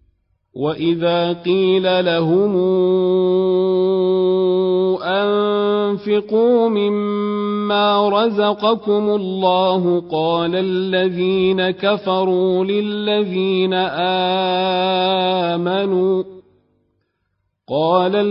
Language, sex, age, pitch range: Arabic, male, 40-59, 165-205 Hz